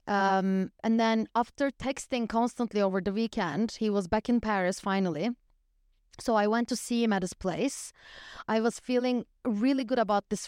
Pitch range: 205-250 Hz